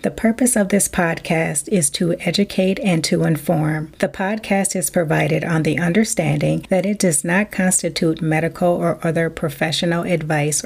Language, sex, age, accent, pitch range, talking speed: English, female, 30-49, American, 160-185 Hz, 160 wpm